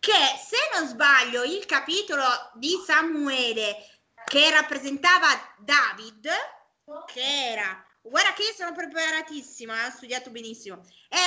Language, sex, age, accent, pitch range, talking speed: Italian, female, 20-39, native, 235-345 Hz, 110 wpm